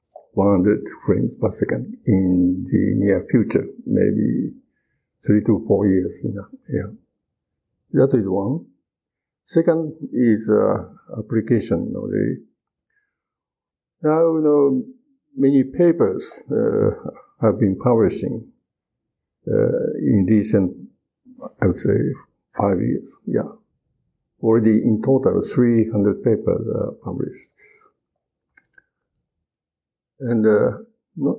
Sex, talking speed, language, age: male, 95 wpm, English, 50-69